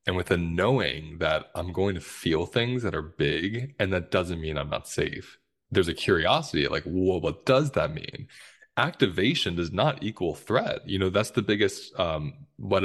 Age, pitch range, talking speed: 20-39, 85-115 Hz, 195 wpm